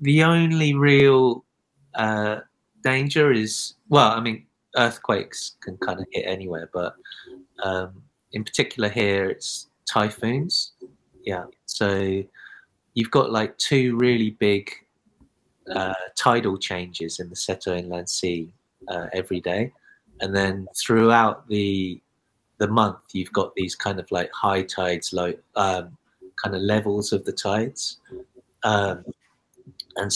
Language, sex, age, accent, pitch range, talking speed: English, male, 30-49, British, 95-115 Hz, 125 wpm